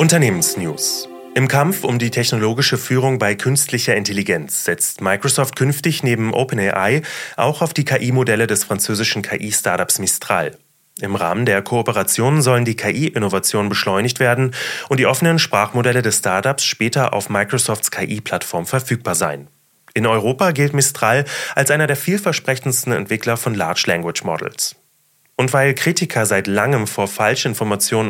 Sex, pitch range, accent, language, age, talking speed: male, 105-135 Hz, German, German, 30-49, 135 wpm